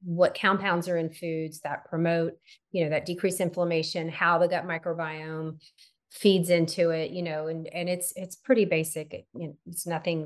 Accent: American